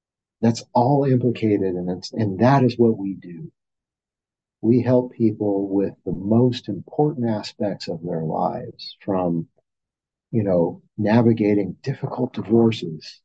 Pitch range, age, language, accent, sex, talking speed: 90-115 Hz, 50-69, English, American, male, 125 wpm